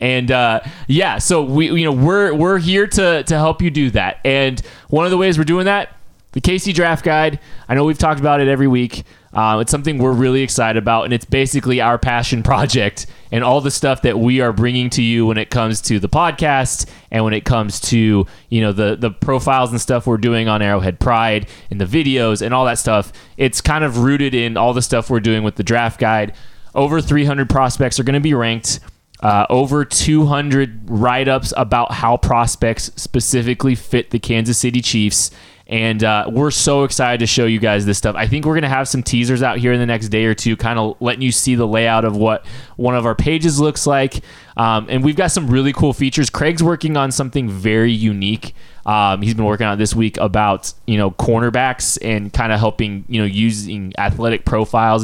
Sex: male